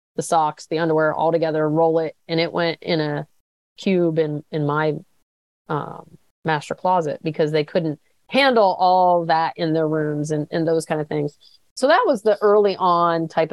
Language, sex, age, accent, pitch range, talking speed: English, female, 30-49, American, 160-195 Hz, 185 wpm